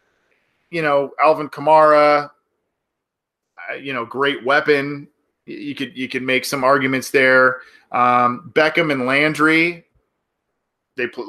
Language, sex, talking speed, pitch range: English, male, 110 wpm, 120-145 Hz